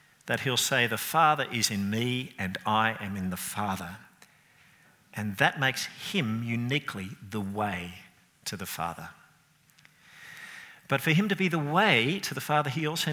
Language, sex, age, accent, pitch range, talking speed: English, male, 50-69, Australian, 115-160 Hz, 165 wpm